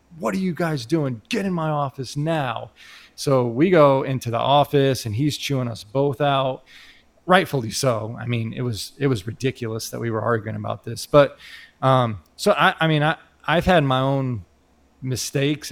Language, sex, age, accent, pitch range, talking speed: English, male, 30-49, American, 120-145 Hz, 185 wpm